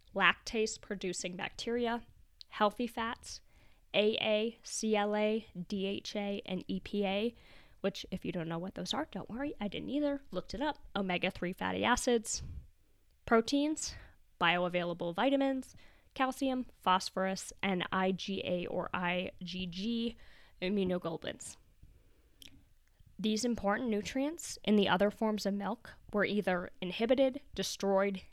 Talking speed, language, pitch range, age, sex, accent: 110 wpm, English, 185-230 Hz, 10-29, female, American